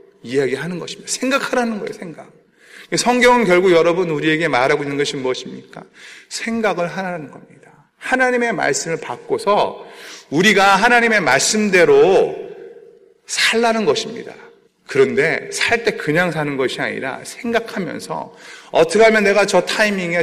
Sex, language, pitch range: male, Korean, 145-245 Hz